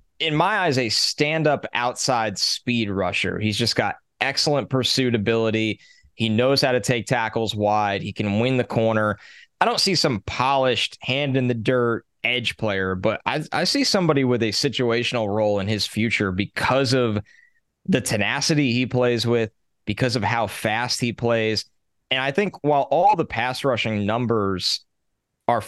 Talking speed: 160 wpm